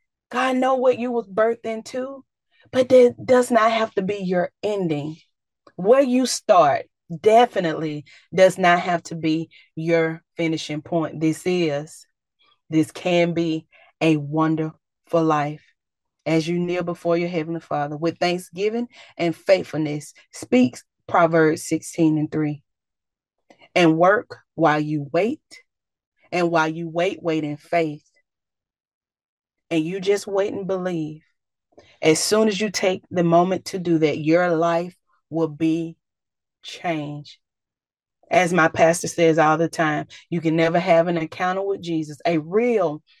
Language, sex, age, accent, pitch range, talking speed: English, female, 30-49, American, 155-190 Hz, 140 wpm